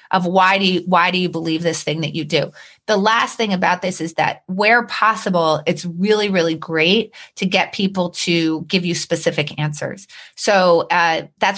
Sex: female